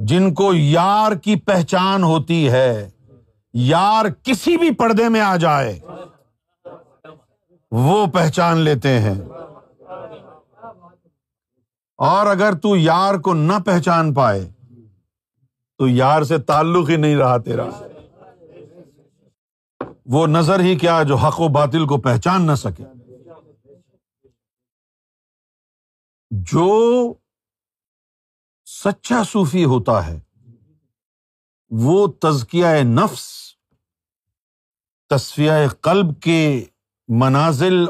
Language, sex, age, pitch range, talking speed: Urdu, male, 50-69, 115-175 Hz, 90 wpm